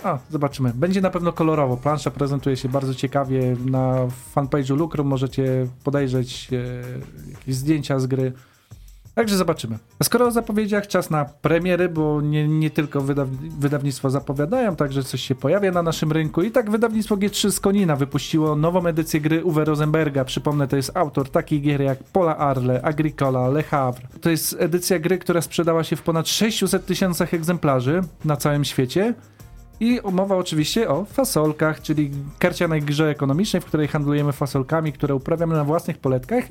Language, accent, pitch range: Polish, native, 140-180 Hz